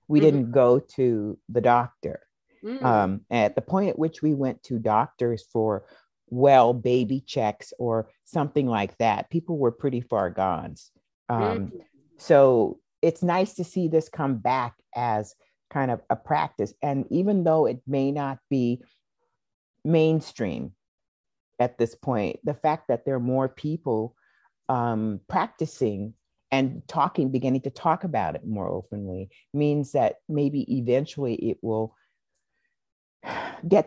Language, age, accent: English, 50-69, American